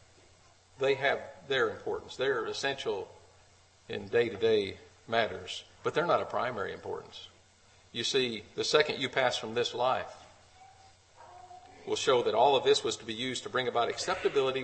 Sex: male